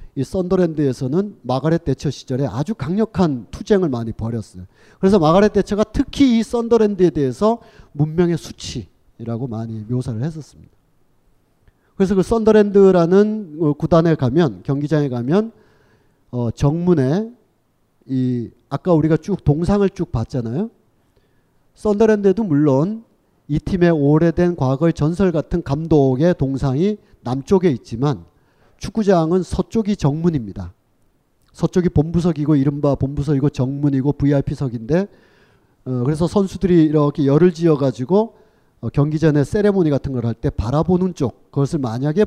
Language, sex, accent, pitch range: Korean, male, native, 135-185 Hz